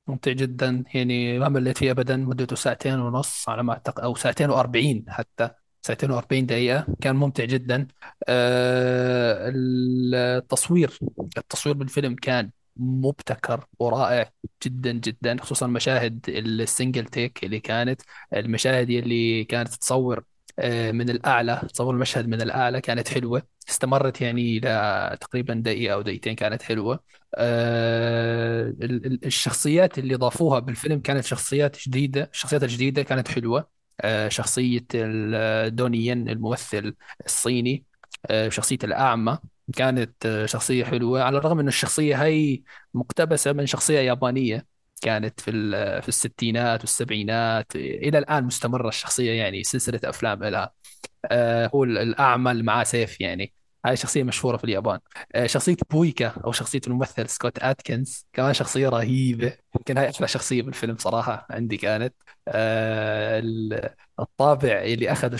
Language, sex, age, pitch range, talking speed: Arabic, male, 20-39, 115-130 Hz, 125 wpm